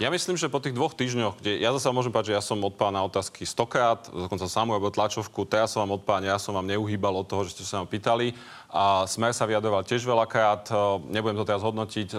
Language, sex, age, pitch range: Slovak, male, 30-49, 105-125 Hz